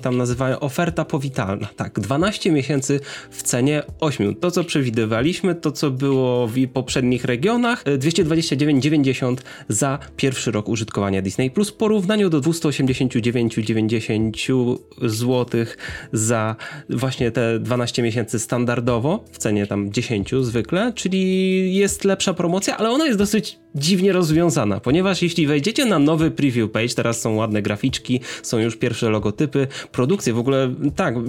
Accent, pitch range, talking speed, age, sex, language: native, 115-165 Hz, 135 wpm, 20-39, male, Polish